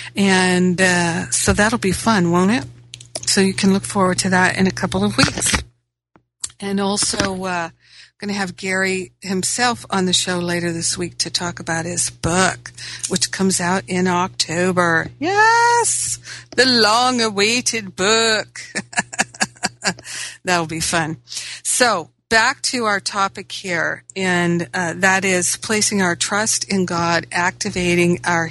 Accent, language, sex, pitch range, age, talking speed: American, English, female, 175-205 Hz, 50-69, 145 wpm